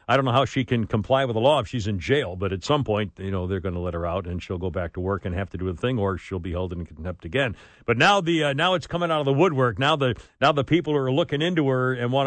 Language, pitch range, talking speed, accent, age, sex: English, 115-160 Hz, 335 wpm, American, 60-79, male